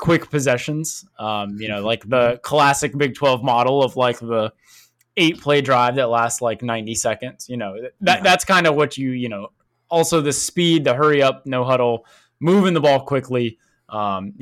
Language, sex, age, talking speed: English, male, 20-39, 185 wpm